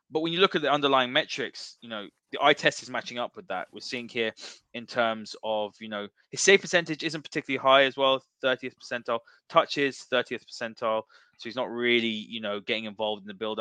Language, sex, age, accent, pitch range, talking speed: English, male, 20-39, British, 110-145 Hz, 220 wpm